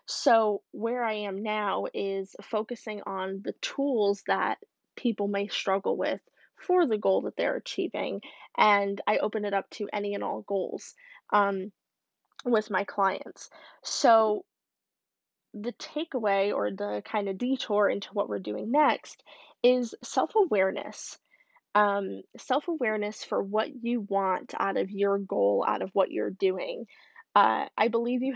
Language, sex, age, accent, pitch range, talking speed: English, female, 10-29, American, 200-240 Hz, 145 wpm